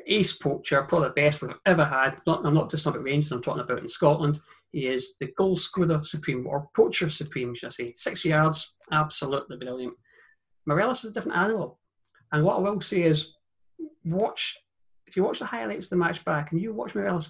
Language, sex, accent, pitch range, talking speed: English, male, British, 155-195 Hz, 210 wpm